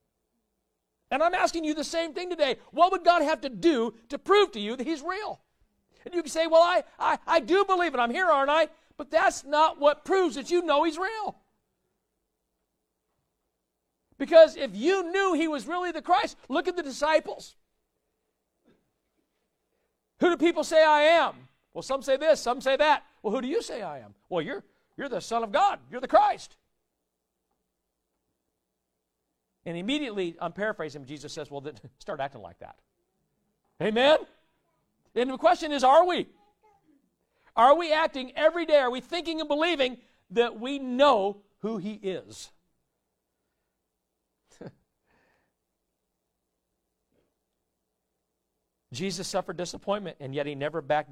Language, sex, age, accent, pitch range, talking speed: English, male, 50-69, American, 210-335 Hz, 155 wpm